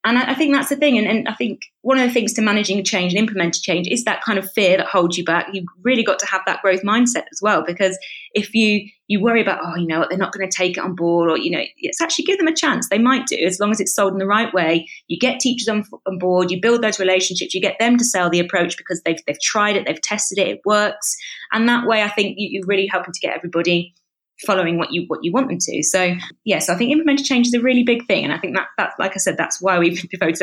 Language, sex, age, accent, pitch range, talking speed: English, female, 20-39, British, 180-235 Hz, 295 wpm